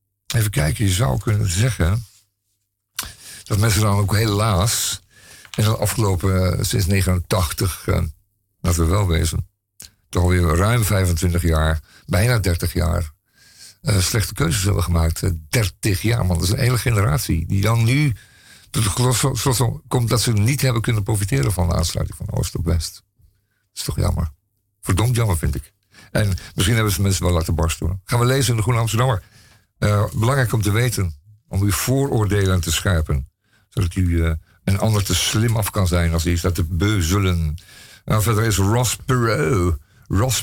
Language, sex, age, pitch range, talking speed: Dutch, male, 50-69, 90-115 Hz, 170 wpm